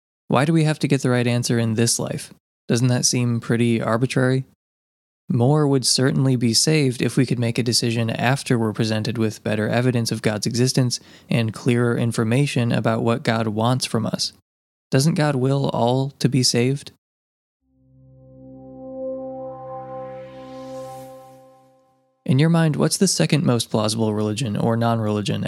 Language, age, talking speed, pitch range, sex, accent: English, 20-39, 150 wpm, 115-130 Hz, male, American